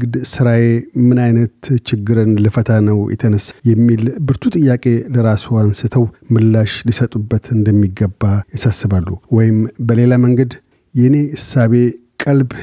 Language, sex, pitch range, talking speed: Amharic, male, 110-125 Hz, 70 wpm